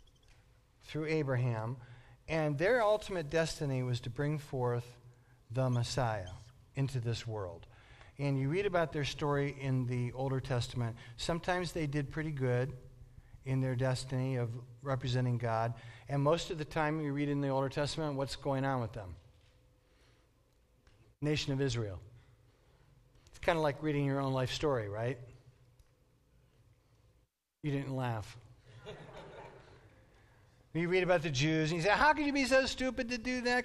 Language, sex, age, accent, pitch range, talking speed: English, male, 50-69, American, 125-160 Hz, 150 wpm